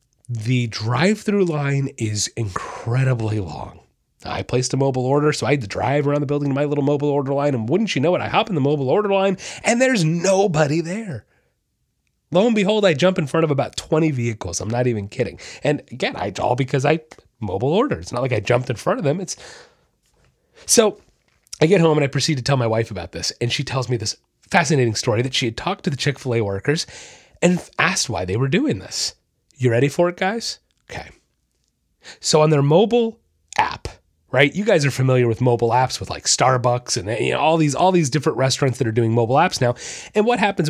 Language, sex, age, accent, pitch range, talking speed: English, male, 30-49, American, 120-165 Hz, 220 wpm